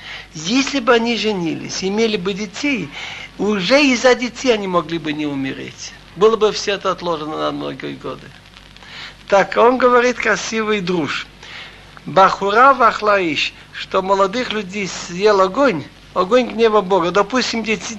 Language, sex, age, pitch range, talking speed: Russian, male, 60-79, 195-240 Hz, 135 wpm